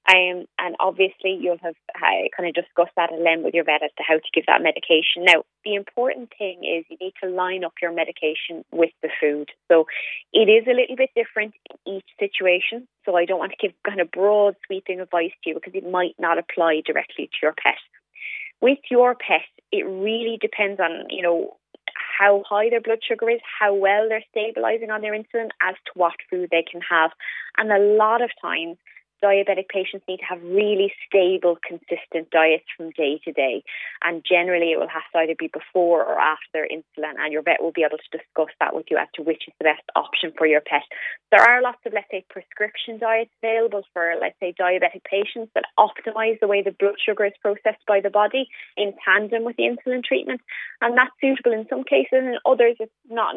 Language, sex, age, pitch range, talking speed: English, female, 20-39, 170-225 Hz, 215 wpm